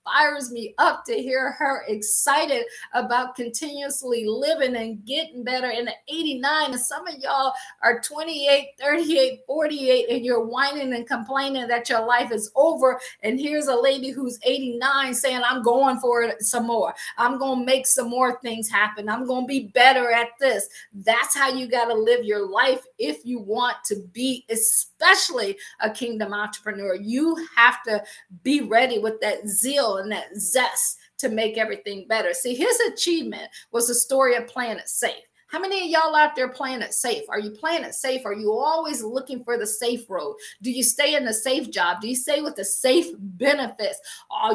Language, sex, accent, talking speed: English, female, American, 190 wpm